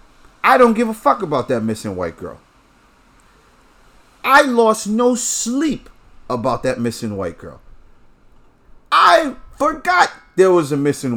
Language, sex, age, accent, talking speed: English, male, 40-59, American, 135 wpm